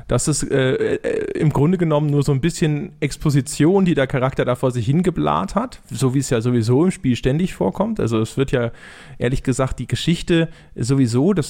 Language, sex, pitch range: German, male, 130-155 Hz